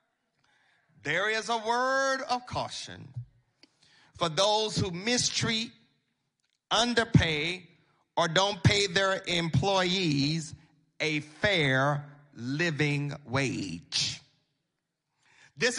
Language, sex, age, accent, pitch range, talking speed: English, male, 40-59, American, 165-235 Hz, 80 wpm